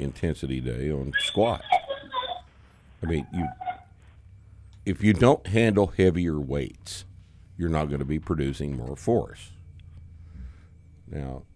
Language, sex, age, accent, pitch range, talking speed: English, male, 60-79, American, 70-95 Hz, 115 wpm